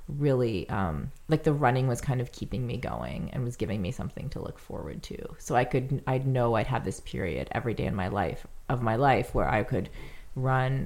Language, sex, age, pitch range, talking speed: English, female, 30-49, 105-135 Hz, 225 wpm